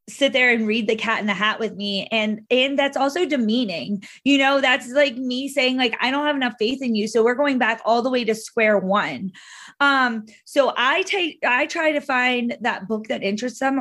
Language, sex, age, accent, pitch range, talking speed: English, female, 20-39, American, 215-265 Hz, 230 wpm